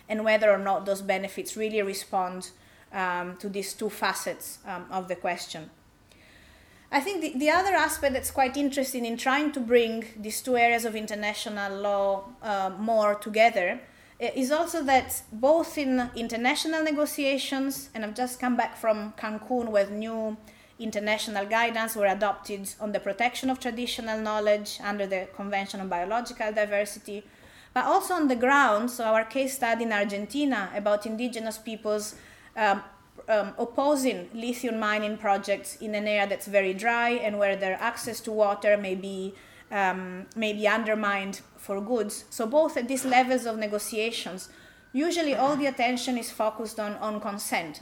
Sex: female